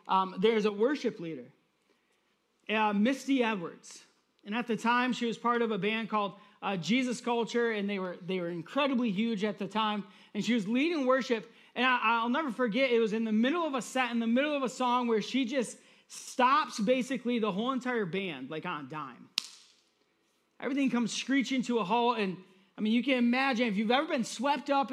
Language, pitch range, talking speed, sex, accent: English, 205-250 Hz, 210 wpm, male, American